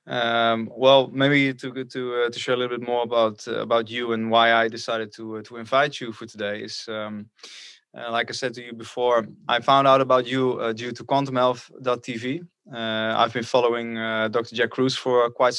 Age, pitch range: 20-39, 115-130 Hz